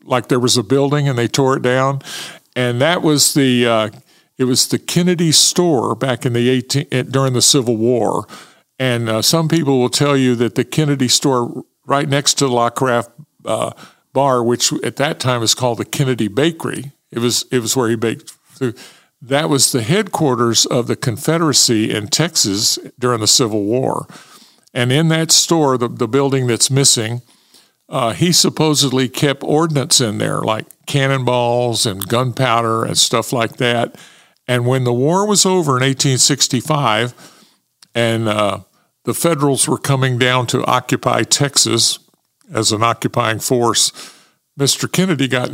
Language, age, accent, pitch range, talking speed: English, 50-69, American, 120-140 Hz, 165 wpm